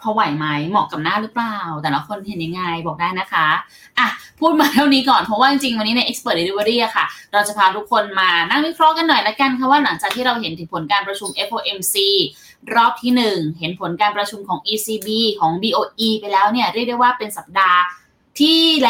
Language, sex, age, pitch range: Thai, female, 10-29, 200-255 Hz